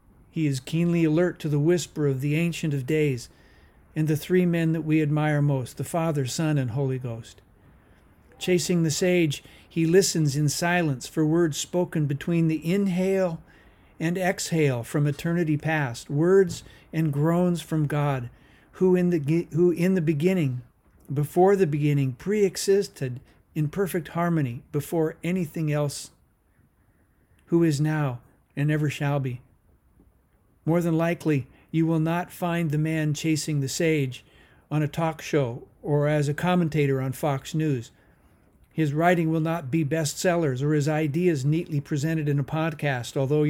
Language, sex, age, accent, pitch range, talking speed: English, male, 50-69, American, 140-170 Hz, 150 wpm